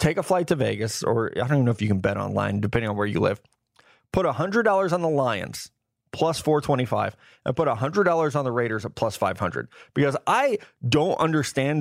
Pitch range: 125-160 Hz